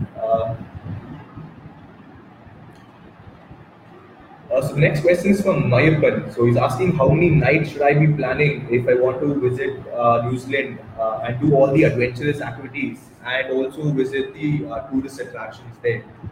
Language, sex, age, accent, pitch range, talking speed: English, male, 20-39, Indian, 120-150 Hz, 150 wpm